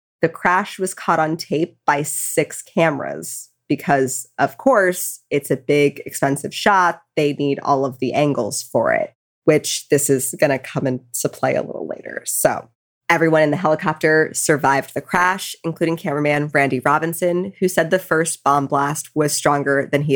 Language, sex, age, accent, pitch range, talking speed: English, female, 20-39, American, 140-175 Hz, 175 wpm